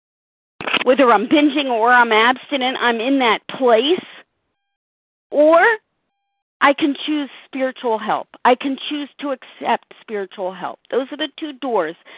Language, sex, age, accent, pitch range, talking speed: English, female, 50-69, American, 240-325 Hz, 140 wpm